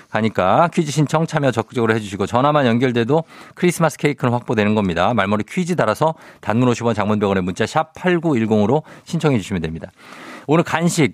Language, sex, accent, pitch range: Korean, male, native, 115-155 Hz